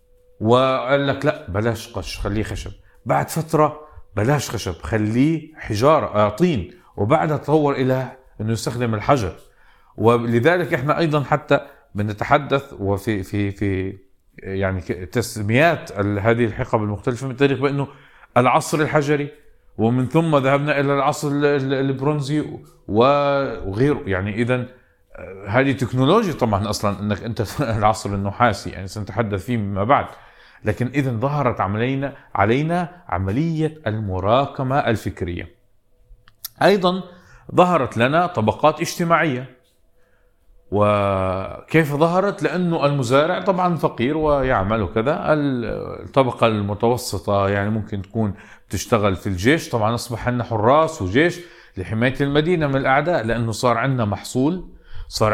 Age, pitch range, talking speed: 50-69, 105-145 Hz, 110 wpm